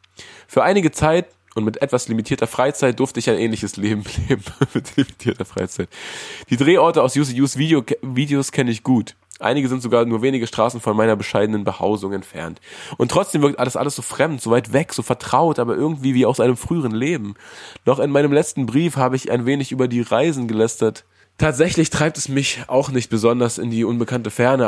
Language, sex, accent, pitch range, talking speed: German, male, German, 105-135 Hz, 195 wpm